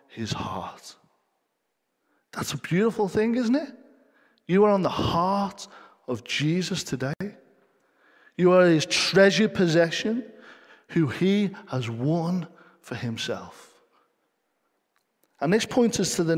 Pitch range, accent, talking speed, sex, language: 145-200 Hz, British, 120 wpm, male, English